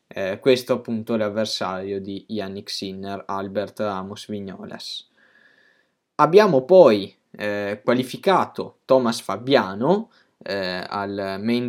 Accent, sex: native, male